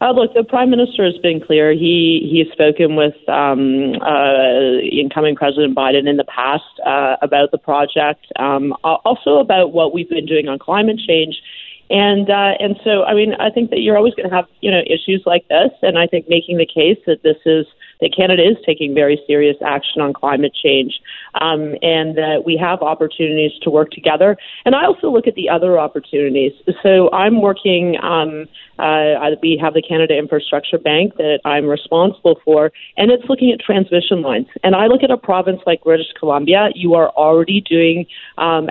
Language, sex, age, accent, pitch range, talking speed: English, female, 30-49, American, 150-190 Hz, 190 wpm